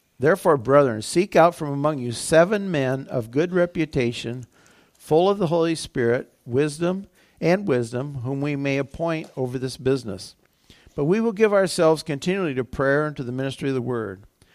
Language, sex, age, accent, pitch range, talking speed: English, male, 50-69, American, 130-160 Hz, 175 wpm